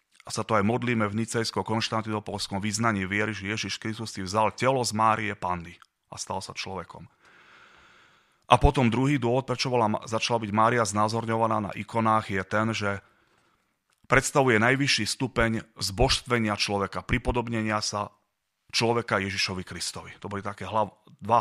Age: 30-49